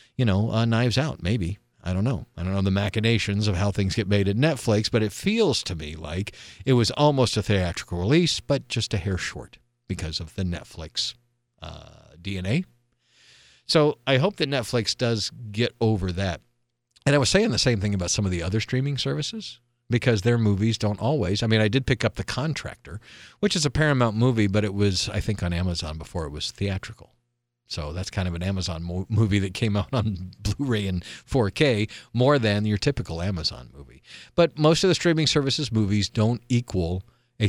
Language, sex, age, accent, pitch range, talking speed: English, male, 50-69, American, 95-120 Hz, 200 wpm